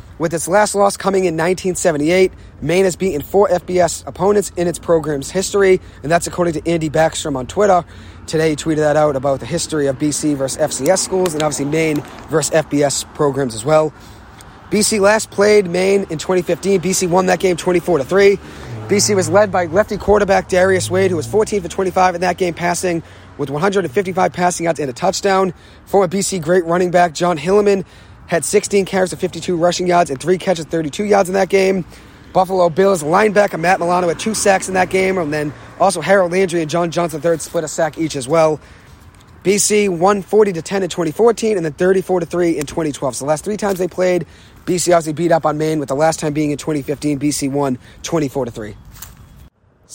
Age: 30-49